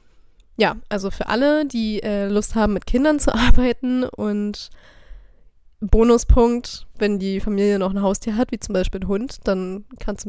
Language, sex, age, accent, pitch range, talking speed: German, female, 20-39, German, 195-230 Hz, 170 wpm